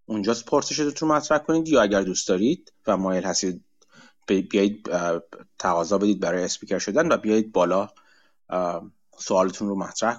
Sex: male